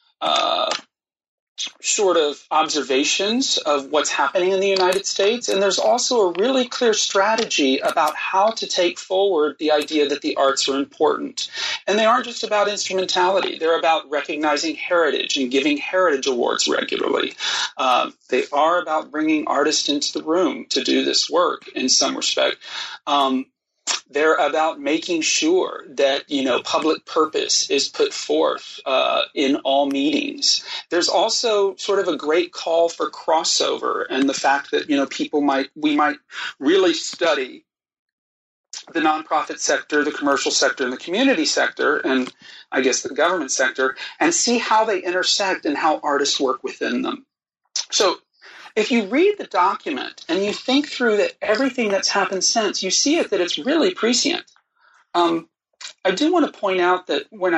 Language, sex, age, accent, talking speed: English, male, 40-59, American, 165 wpm